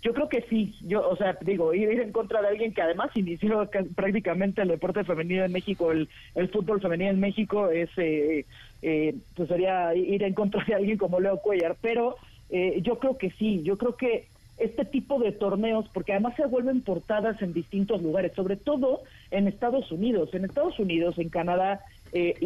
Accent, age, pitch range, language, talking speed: Mexican, 40-59, 180-225 Hz, Spanish, 200 wpm